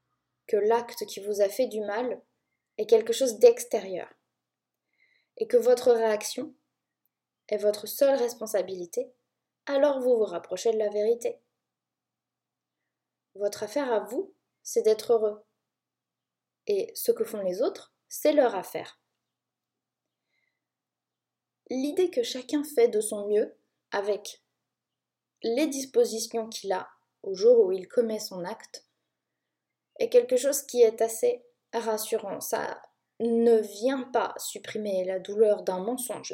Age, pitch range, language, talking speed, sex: 20-39, 210-290 Hz, French, 130 wpm, female